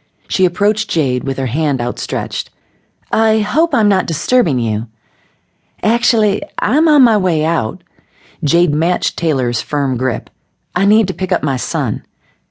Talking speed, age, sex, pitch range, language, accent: 150 wpm, 40-59, female, 135-210 Hz, English, American